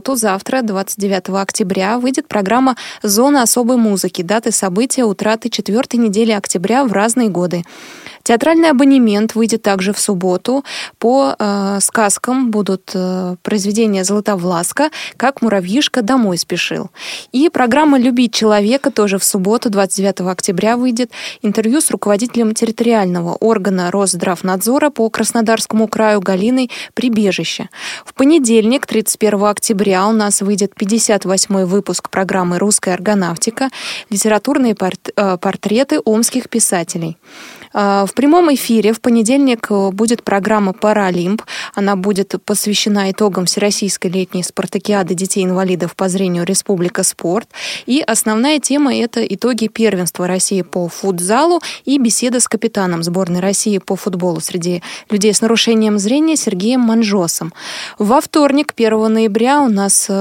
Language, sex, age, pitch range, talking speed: Russian, female, 20-39, 195-235 Hz, 120 wpm